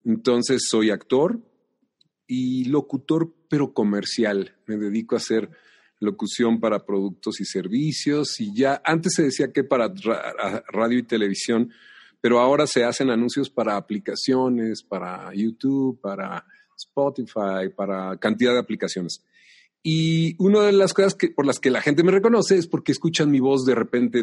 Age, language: 40-59, Spanish